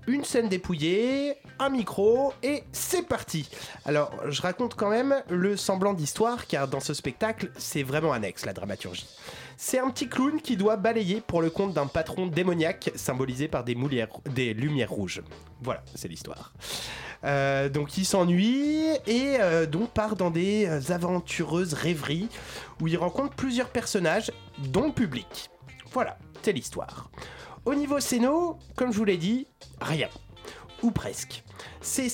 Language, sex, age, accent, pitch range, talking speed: French, male, 30-49, French, 150-225 Hz, 155 wpm